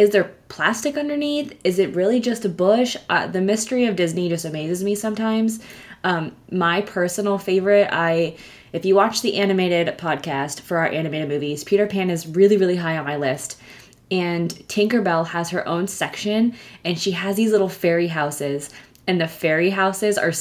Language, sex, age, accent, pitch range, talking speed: English, female, 20-39, American, 160-205 Hz, 180 wpm